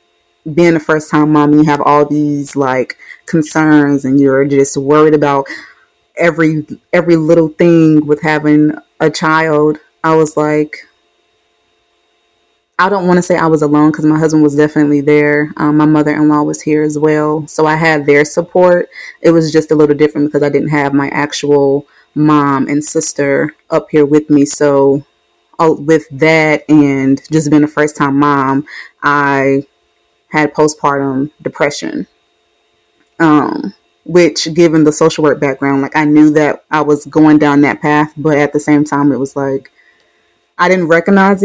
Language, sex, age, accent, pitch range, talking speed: English, female, 20-39, American, 140-155 Hz, 165 wpm